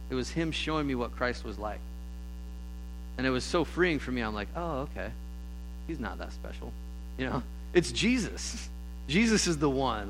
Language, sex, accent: English, male, American